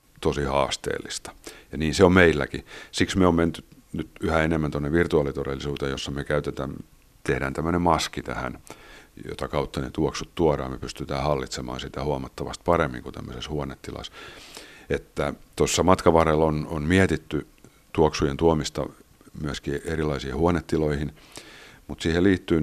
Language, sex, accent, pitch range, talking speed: Finnish, male, native, 70-85 Hz, 135 wpm